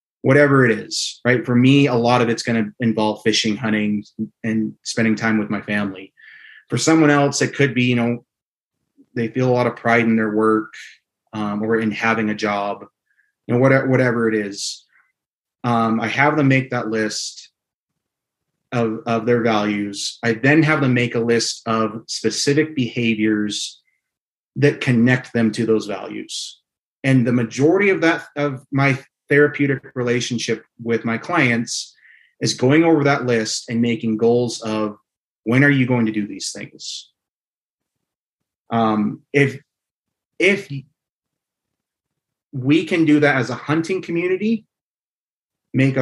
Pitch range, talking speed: 115-140 Hz, 155 wpm